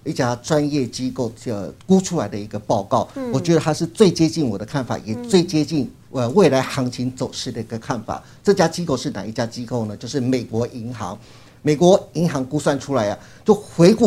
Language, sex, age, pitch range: Chinese, male, 50-69, 125-170 Hz